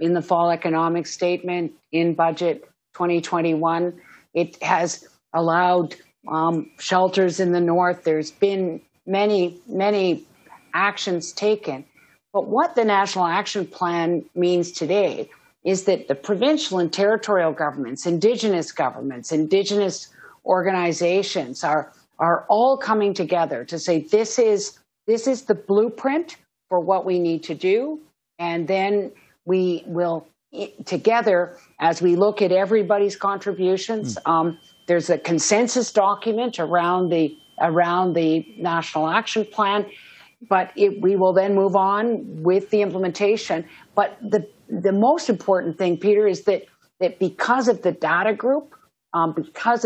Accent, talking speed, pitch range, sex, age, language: American, 130 wpm, 170-210 Hz, female, 50-69, English